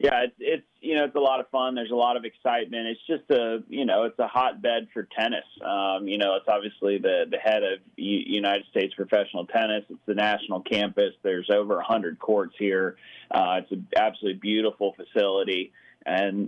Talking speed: 205 wpm